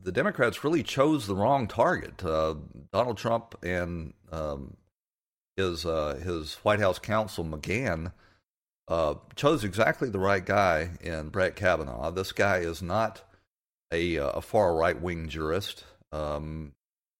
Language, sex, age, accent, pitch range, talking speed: English, male, 40-59, American, 80-100 Hz, 135 wpm